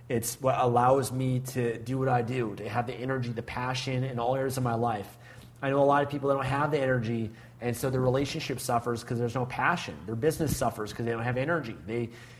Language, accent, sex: English, American, male